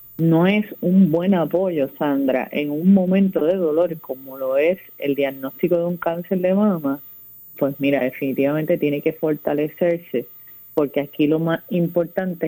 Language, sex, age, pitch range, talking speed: Spanish, female, 30-49, 140-170 Hz, 155 wpm